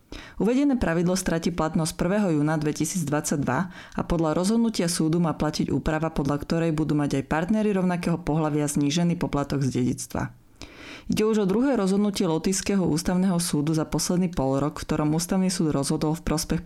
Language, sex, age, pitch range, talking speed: Slovak, female, 30-49, 145-180 Hz, 160 wpm